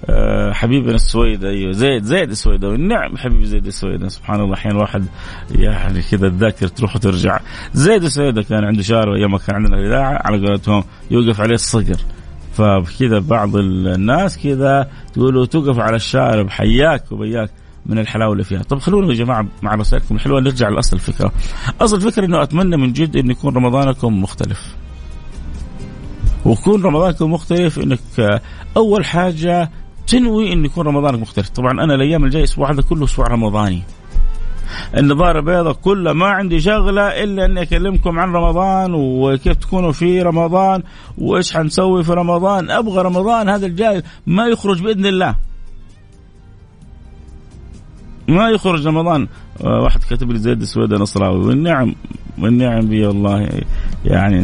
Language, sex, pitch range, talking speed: Arabic, male, 100-165 Hz, 140 wpm